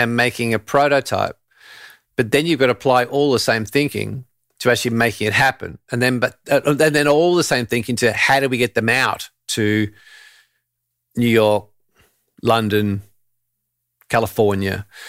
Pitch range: 110-140 Hz